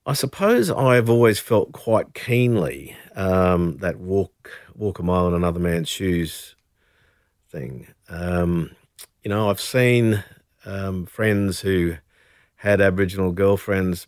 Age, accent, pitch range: 50-69, Australian, 90-110 Hz